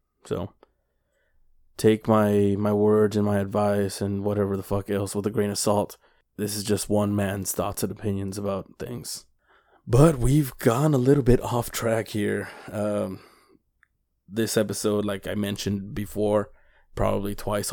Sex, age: male, 20-39